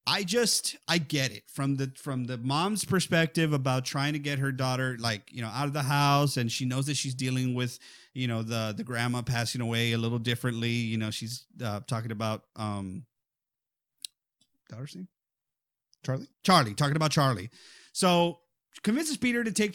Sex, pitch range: male, 130-170 Hz